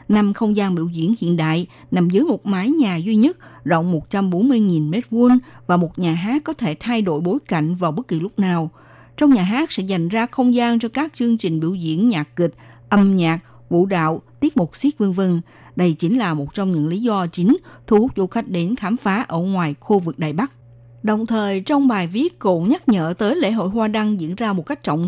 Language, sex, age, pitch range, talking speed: Vietnamese, female, 60-79, 165-230 Hz, 225 wpm